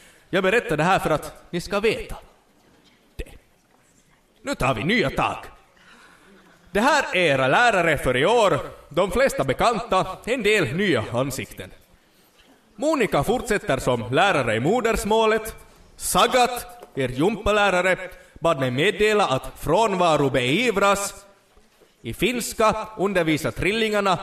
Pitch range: 155-220 Hz